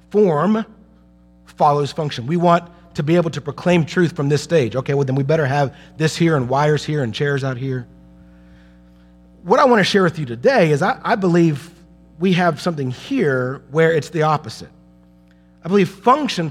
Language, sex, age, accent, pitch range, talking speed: English, male, 40-59, American, 130-200 Hz, 190 wpm